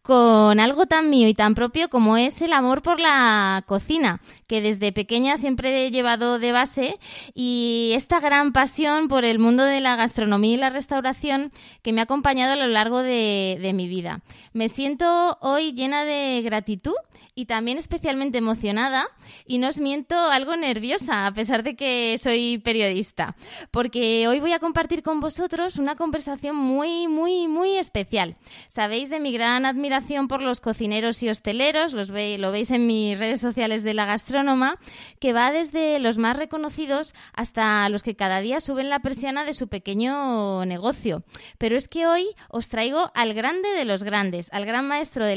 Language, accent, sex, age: Spanish, Spanish, female, 20-39